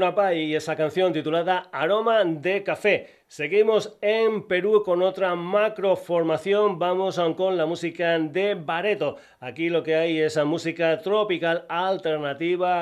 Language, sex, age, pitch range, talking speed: Spanish, male, 40-59, 145-175 Hz, 125 wpm